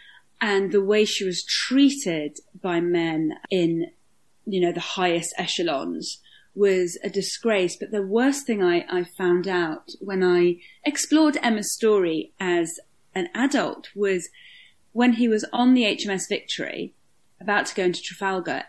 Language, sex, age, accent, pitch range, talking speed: English, female, 30-49, British, 170-210 Hz, 150 wpm